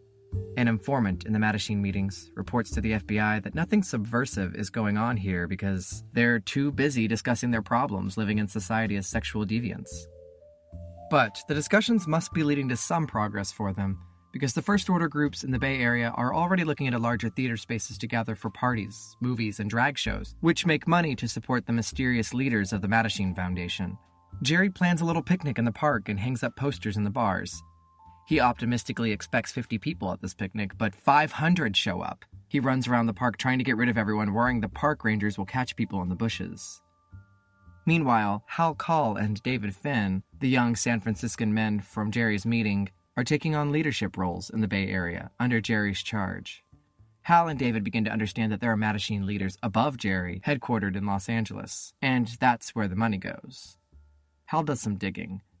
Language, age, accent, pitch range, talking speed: English, 20-39, American, 100-125 Hz, 195 wpm